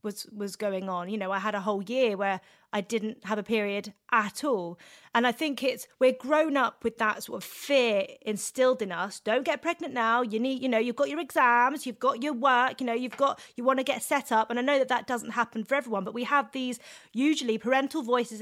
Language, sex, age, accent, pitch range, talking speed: English, female, 30-49, British, 225-285 Hz, 250 wpm